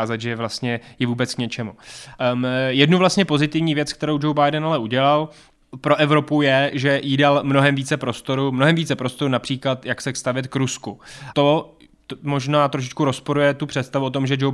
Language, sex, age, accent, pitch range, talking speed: Czech, male, 20-39, native, 130-145 Hz, 190 wpm